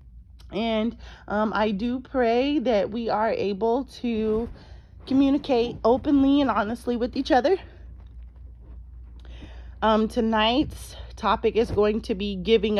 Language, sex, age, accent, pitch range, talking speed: English, female, 30-49, American, 175-235 Hz, 115 wpm